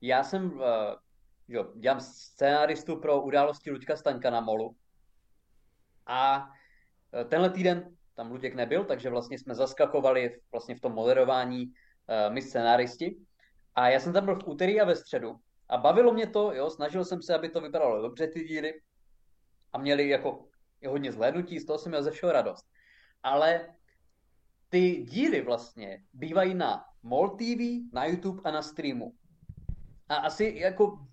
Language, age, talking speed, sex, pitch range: Czech, 20-39, 150 wpm, male, 135-185 Hz